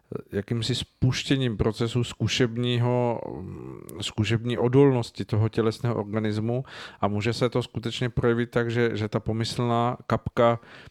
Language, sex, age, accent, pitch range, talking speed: Czech, male, 40-59, native, 105-115 Hz, 110 wpm